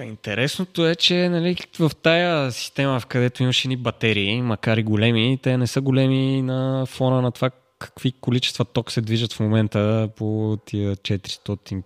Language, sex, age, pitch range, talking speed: Bulgarian, male, 20-39, 95-135 Hz, 160 wpm